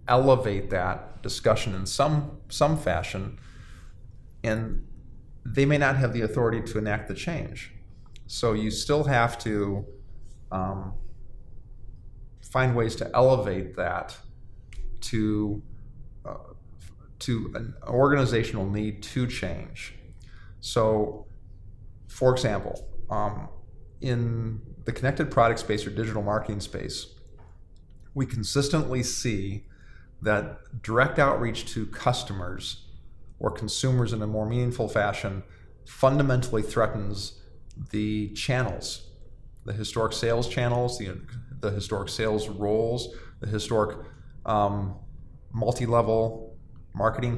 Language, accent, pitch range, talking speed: English, American, 100-120 Hz, 105 wpm